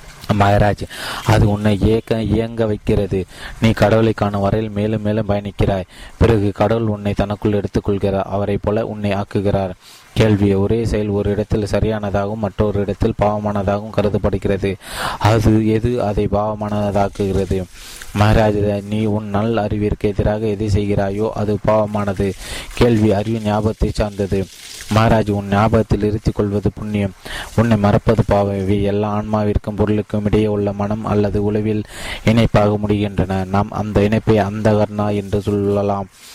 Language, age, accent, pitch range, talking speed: Tamil, 20-39, native, 100-110 Hz, 120 wpm